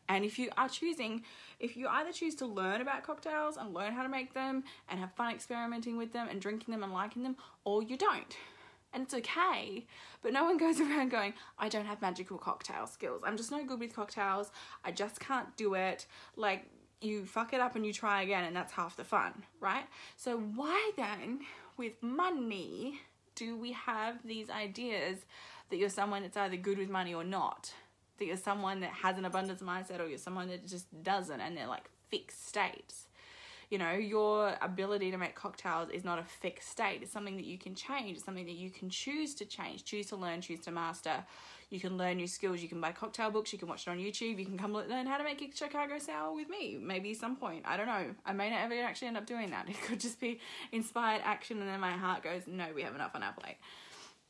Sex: female